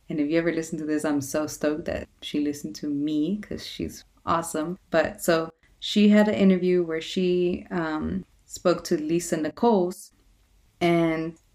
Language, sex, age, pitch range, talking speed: English, female, 20-39, 160-185 Hz, 165 wpm